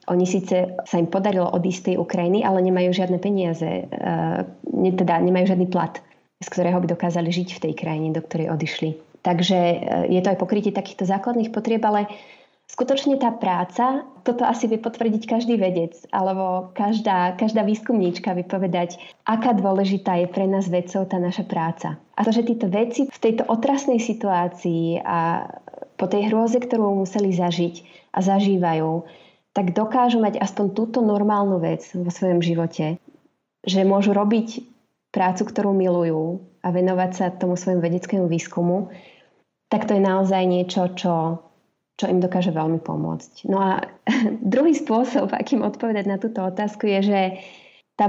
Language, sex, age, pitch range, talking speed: Slovak, female, 20-39, 175-210 Hz, 155 wpm